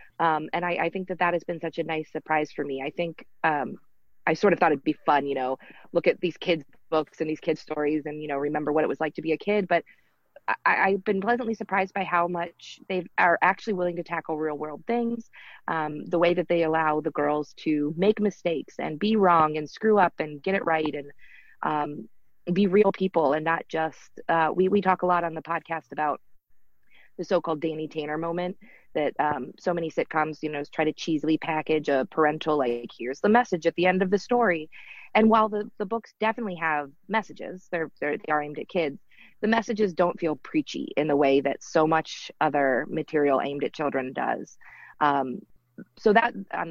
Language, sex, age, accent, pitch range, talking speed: English, female, 30-49, American, 150-190 Hz, 215 wpm